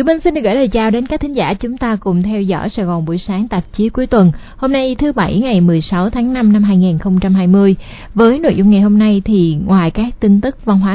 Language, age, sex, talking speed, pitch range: Vietnamese, 20-39, female, 250 wpm, 185-230 Hz